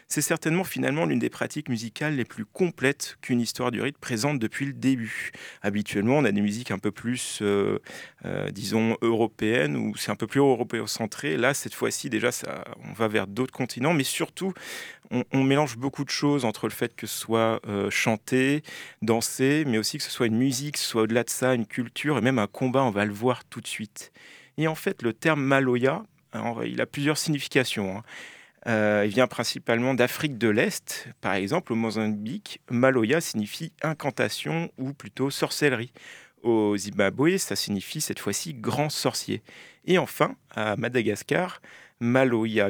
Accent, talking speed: French, 195 wpm